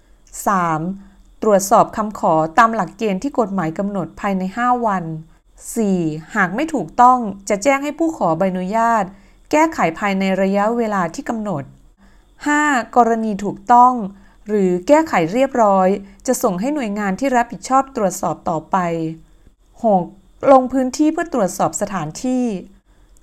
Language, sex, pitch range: Thai, female, 185-245 Hz